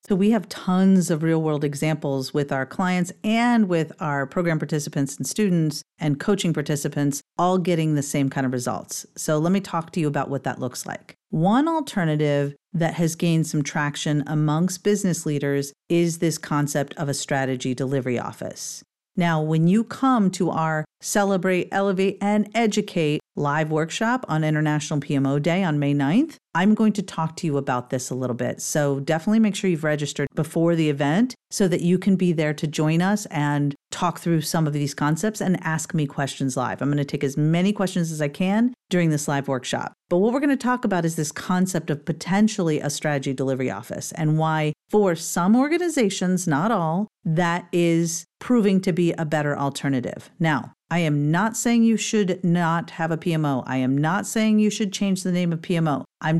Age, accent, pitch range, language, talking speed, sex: 40-59, American, 150-195 Hz, English, 195 wpm, female